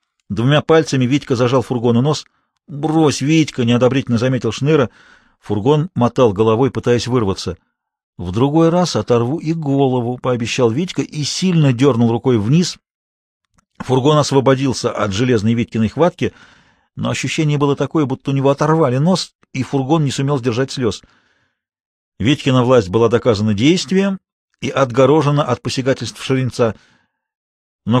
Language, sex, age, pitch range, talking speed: Russian, male, 50-69, 115-145 Hz, 130 wpm